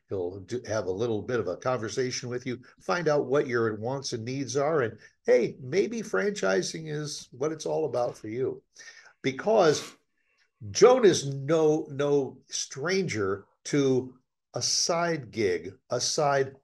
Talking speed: 150 wpm